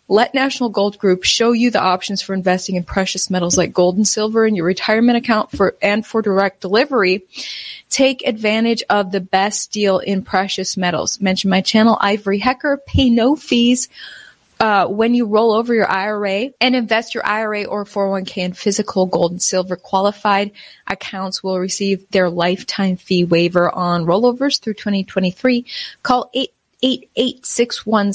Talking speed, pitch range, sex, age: 170 wpm, 185-230 Hz, female, 20-39